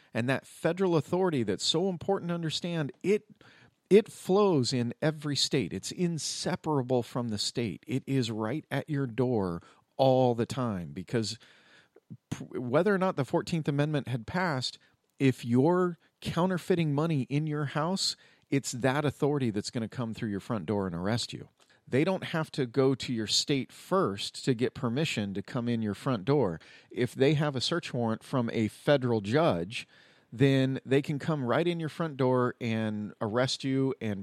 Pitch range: 115-155 Hz